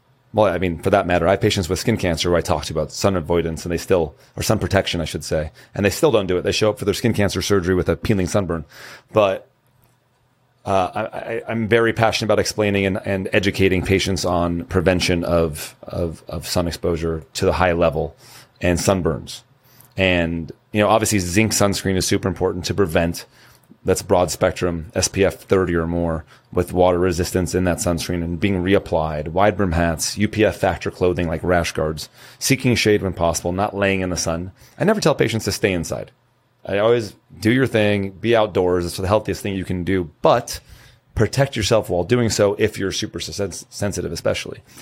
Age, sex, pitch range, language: 30-49, male, 90-110 Hz, English